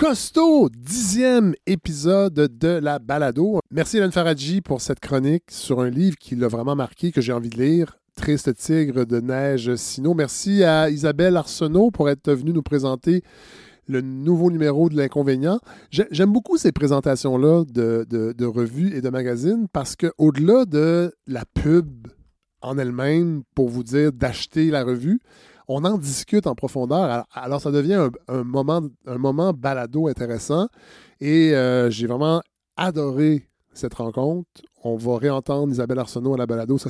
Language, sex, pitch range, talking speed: French, male, 125-170 Hz, 155 wpm